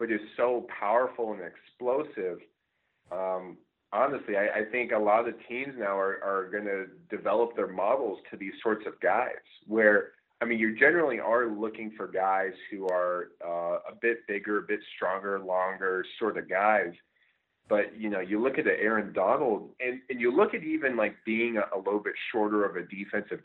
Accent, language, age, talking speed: American, English, 30-49, 190 wpm